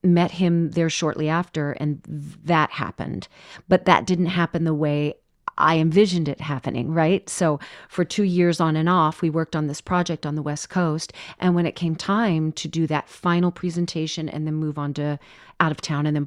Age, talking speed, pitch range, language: 40-59, 205 wpm, 155-205 Hz, English